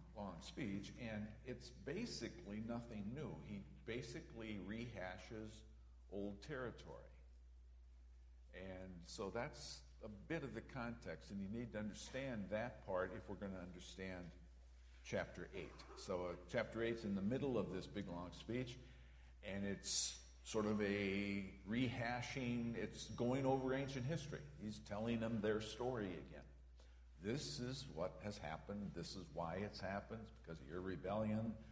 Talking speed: 145 wpm